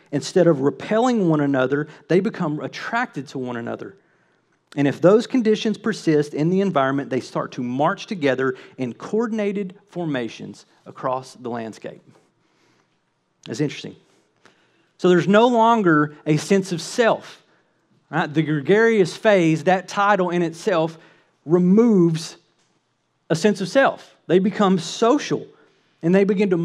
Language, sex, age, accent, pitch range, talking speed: English, male, 40-59, American, 145-195 Hz, 135 wpm